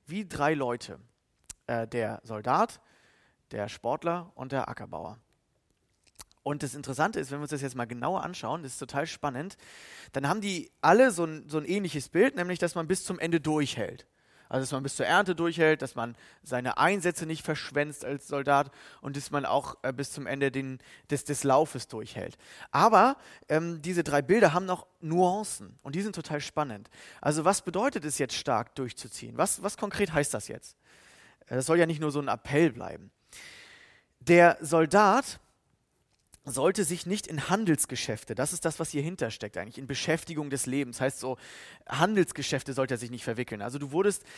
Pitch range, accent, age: 130-175 Hz, German, 30-49